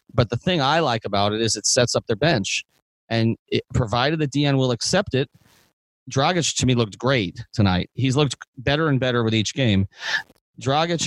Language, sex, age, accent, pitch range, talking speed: English, male, 30-49, American, 115-145 Hz, 195 wpm